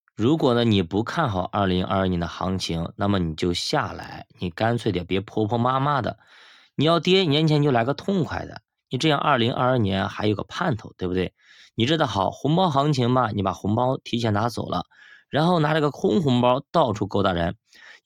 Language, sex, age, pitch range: Chinese, male, 20-39, 105-150 Hz